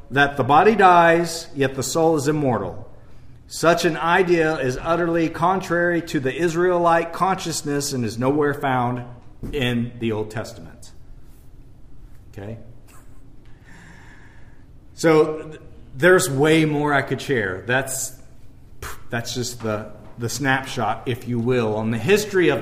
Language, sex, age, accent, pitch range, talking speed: English, male, 40-59, American, 130-185 Hz, 125 wpm